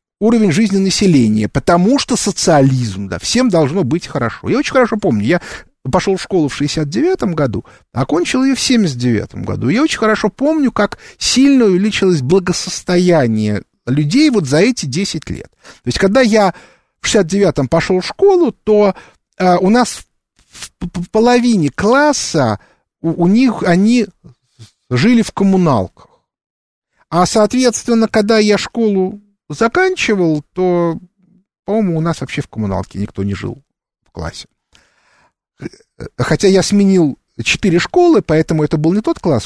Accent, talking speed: native, 145 wpm